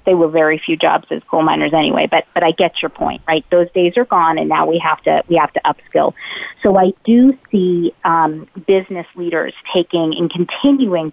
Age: 30-49